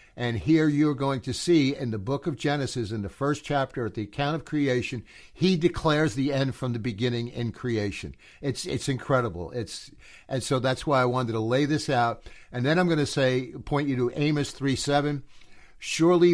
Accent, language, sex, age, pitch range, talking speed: American, English, male, 60-79, 125-150 Hz, 205 wpm